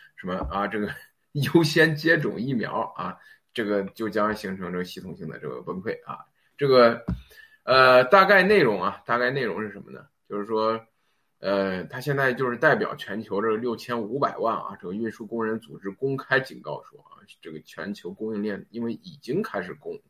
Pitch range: 105-155 Hz